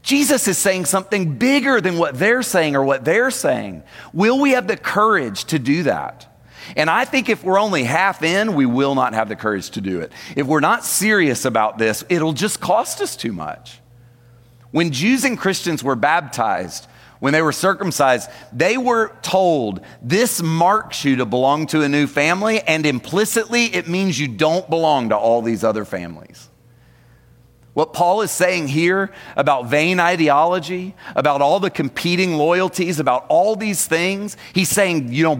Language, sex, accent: English, male, American